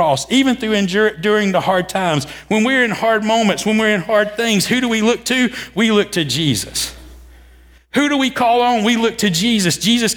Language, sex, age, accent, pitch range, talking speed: English, male, 50-69, American, 195-230 Hz, 215 wpm